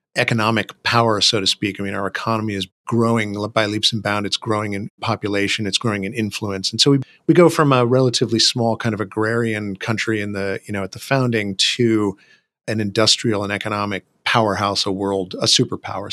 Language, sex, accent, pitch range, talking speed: English, male, American, 105-125 Hz, 195 wpm